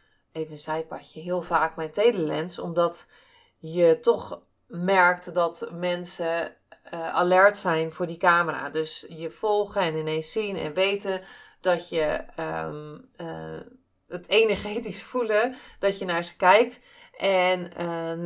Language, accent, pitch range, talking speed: Dutch, Dutch, 160-195 Hz, 135 wpm